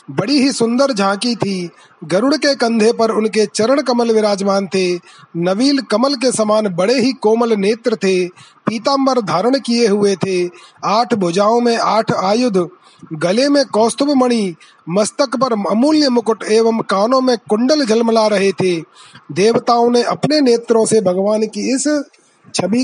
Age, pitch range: 30-49, 200-250 Hz